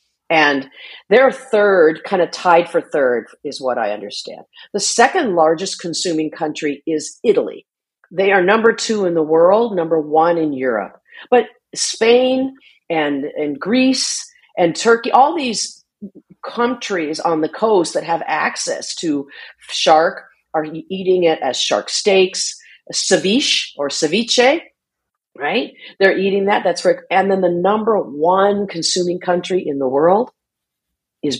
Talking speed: 140 wpm